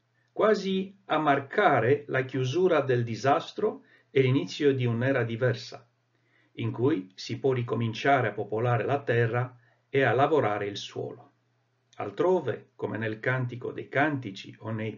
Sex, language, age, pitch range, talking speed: male, Italian, 50-69, 120-160 Hz, 135 wpm